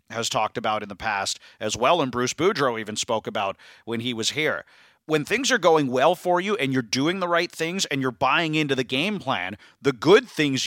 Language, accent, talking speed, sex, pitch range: English, American, 230 wpm, male, 125-150 Hz